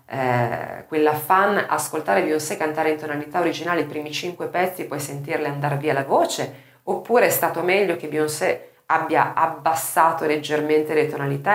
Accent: native